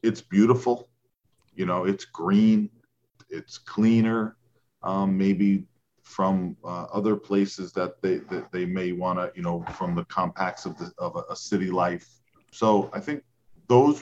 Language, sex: English, male